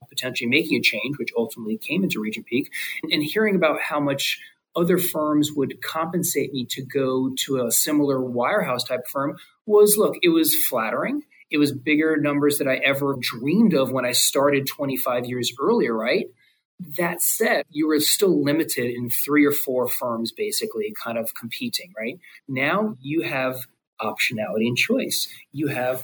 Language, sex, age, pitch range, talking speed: English, male, 30-49, 125-155 Hz, 170 wpm